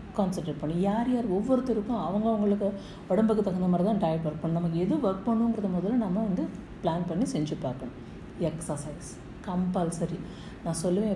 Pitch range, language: 160-200 Hz, Tamil